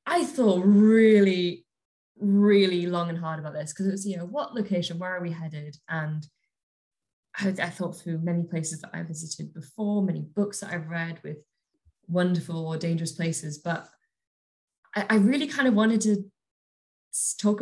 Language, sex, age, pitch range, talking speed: English, female, 10-29, 160-190 Hz, 175 wpm